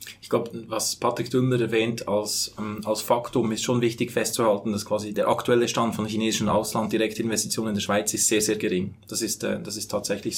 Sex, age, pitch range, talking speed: male, 20-39, 105-115 Hz, 210 wpm